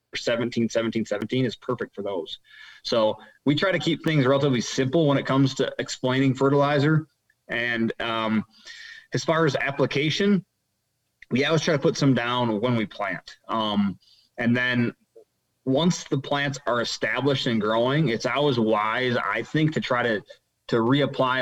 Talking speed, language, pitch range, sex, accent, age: 160 wpm, English, 110-140 Hz, male, American, 20-39